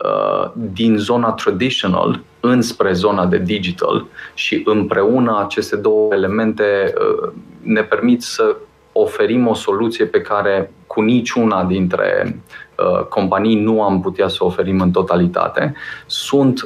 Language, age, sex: Romanian, 30-49, male